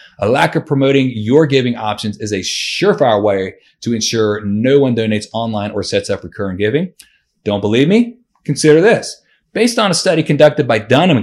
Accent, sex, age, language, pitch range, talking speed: American, male, 30-49, English, 105-145 Hz, 180 wpm